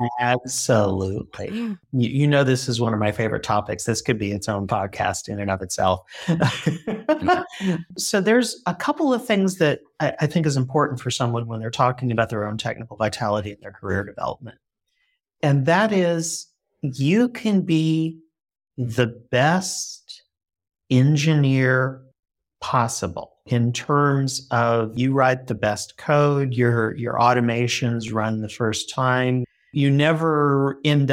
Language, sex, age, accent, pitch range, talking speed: English, male, 40-59, American, 115-155 Hz, 145 wpm